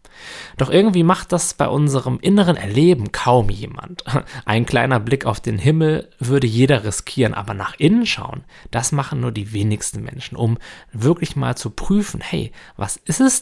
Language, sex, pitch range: German, male, 100-140 Hz